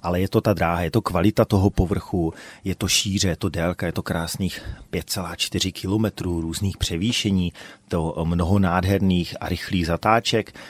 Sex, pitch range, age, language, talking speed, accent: male, 85-100 Hz, 30-49, Czech, 165 wpm, native